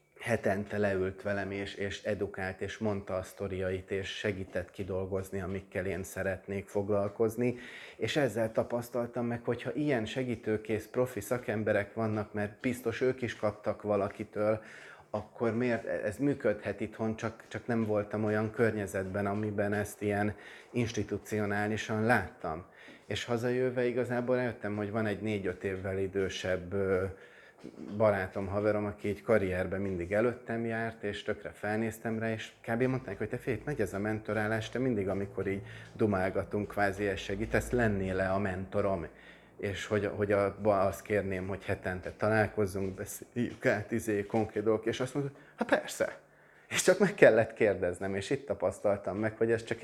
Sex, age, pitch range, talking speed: male, 30-49, 100-115 Hz, 150 wpm